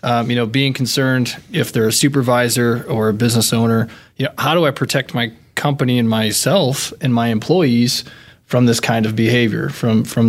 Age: 20-39